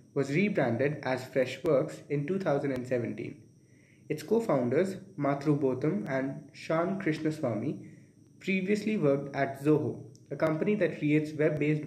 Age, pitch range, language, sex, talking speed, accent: 20-39, 140-160 Hz, English, male, 110 wpm, Indian